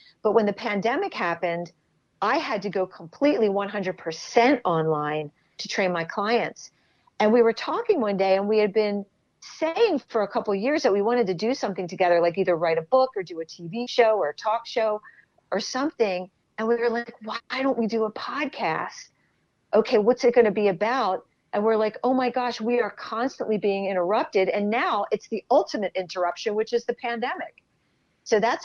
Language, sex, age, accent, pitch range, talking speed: English, female, 40-59, American, 185-235 Hz, 200 wpm